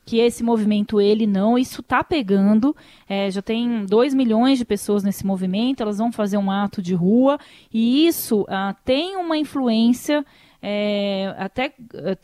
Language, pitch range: Portuguese, 205-265 Hz